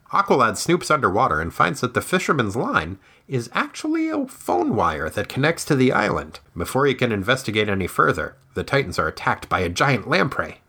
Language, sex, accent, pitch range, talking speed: English, male, American, 95-145 Hz, 185 wpm